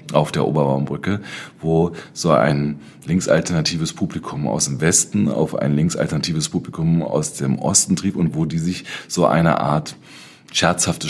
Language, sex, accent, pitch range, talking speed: German, male, German, 75-90 Hz, 145 wpm